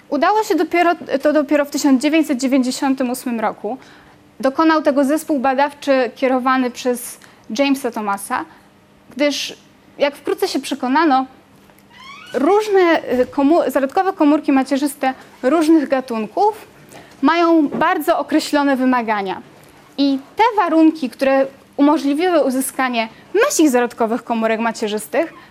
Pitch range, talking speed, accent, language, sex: 255-320 Hz, 100 wpm, native, Polish, female